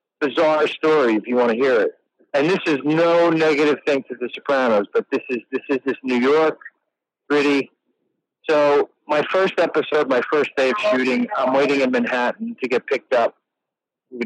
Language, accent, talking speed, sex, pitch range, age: English, American, 185 wpm, male, 135-195 Hz, 50-69